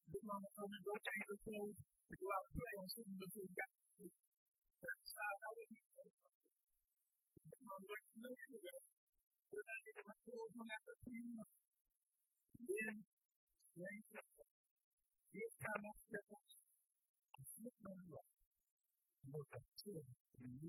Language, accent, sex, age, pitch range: English, American, female, 50-69, 140-220 Hz